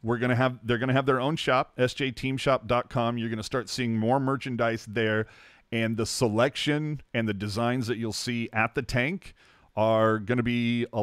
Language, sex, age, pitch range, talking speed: English, male, 40-59, 120-155 Hz, 200 wpm